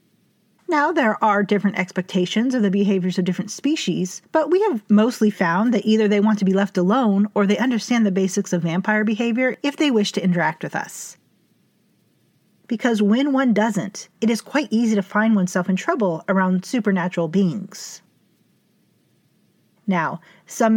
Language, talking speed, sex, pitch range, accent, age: English, 165 wpm, female, 190-230 Hz, American, 40-59